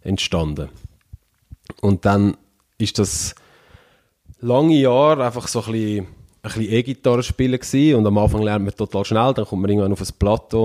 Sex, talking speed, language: male, 165 wpm, German